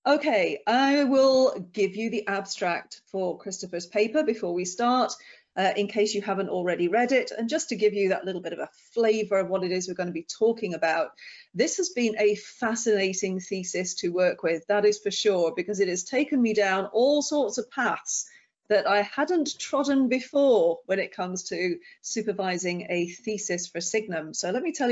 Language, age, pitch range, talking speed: English, 40-59, 185-250 Hz, 200 wpm